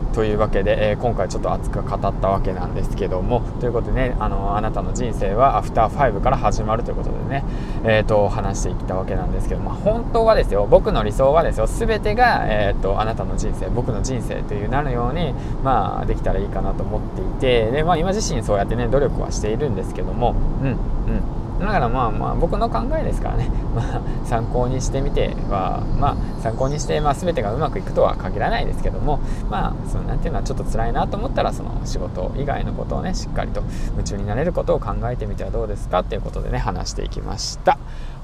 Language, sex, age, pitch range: Japanese, male, 20-39, 105-135 Hz